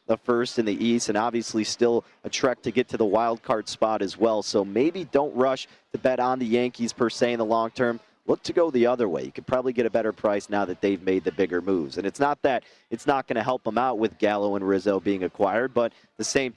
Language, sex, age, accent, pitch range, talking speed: English, male, 40-59, American, 110-130 Hz, 270 wpm